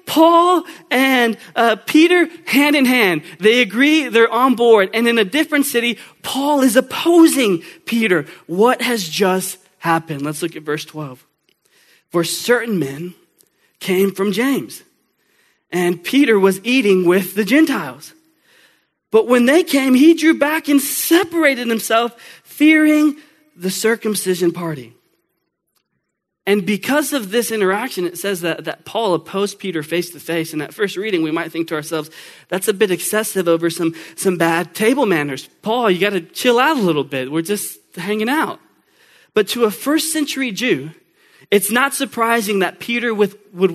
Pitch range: 180-270 Hz